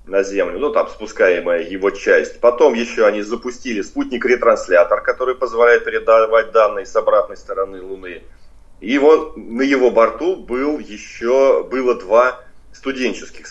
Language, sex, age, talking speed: Russian, male, 30-49, 135 wpm